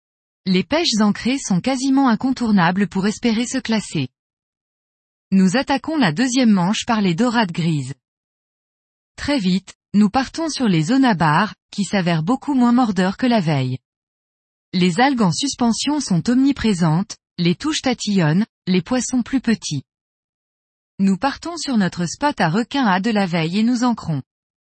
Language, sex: French, female